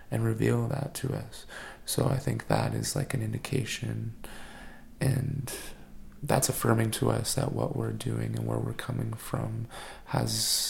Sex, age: male, 20-39